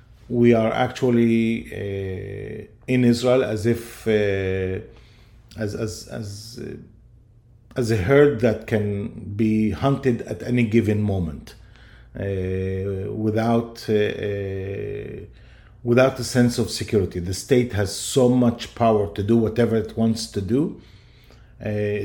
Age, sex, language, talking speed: 40-59, male, English, 130 wpm